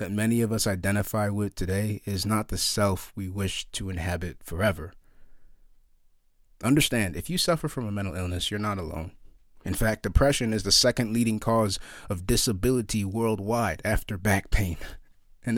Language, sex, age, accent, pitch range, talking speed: English, male, 30-49, American, 90-110 Hz, 160 wpm